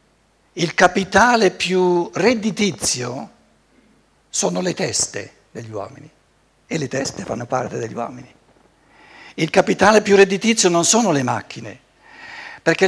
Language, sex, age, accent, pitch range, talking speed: Italian, male, 60-79, native, 165-220 Hz, 115 wpm